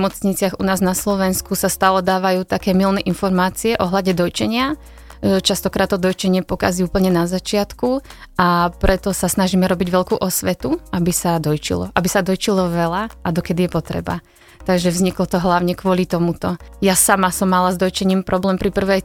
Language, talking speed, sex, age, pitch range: Slovak, 170 wpm, female, 30-49, 175-195 Hz